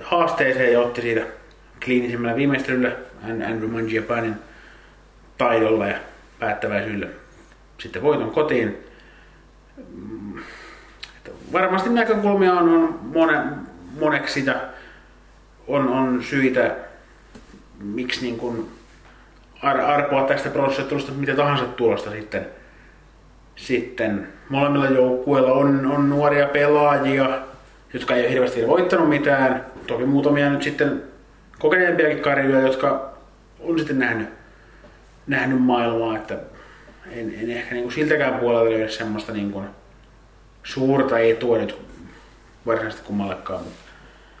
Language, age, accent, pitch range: Finnish, 30-49, native, 115-145 Hz